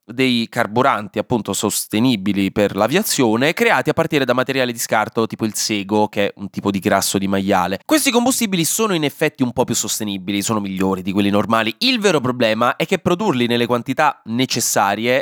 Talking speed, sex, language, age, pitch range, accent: 185 wpm, male, Italian, 20-39, 110-175 Hz, native